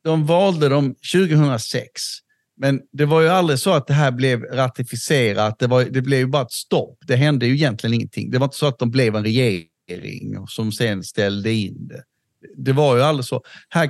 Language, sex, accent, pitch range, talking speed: Swedish, male, native, 120-150 Hz, 205 wpm